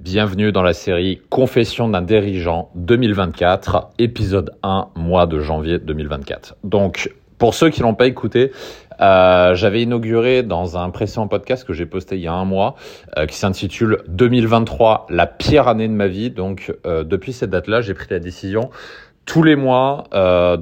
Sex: male